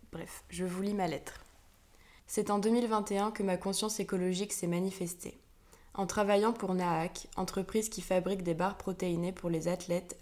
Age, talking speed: 20-39, 165 wpm